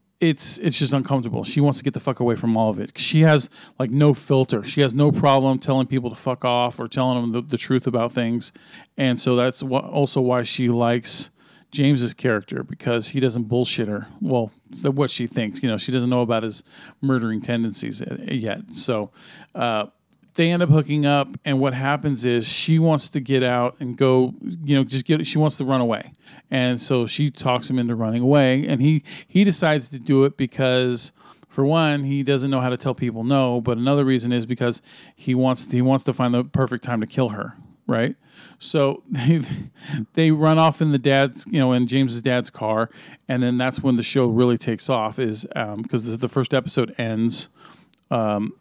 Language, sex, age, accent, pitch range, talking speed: English, male, 40-59, American, 120-140 Hz, 210 wpm